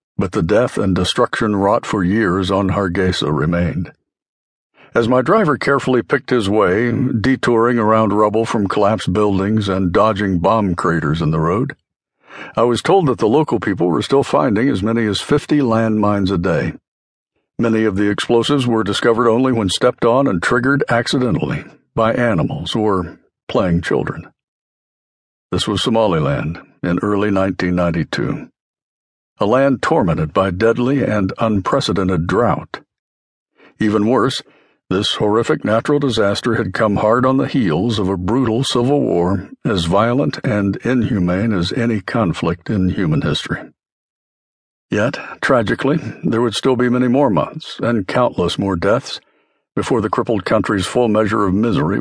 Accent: American